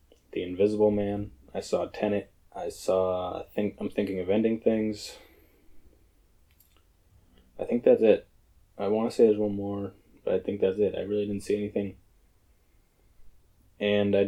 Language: English